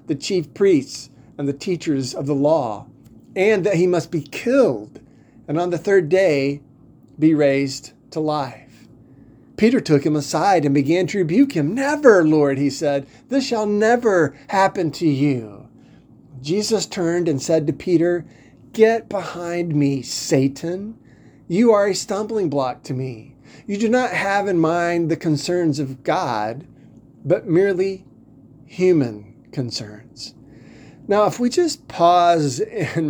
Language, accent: English, American